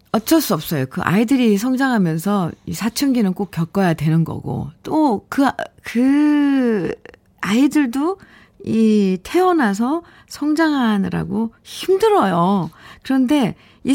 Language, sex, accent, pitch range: Korean, female, native, 170-235 Hz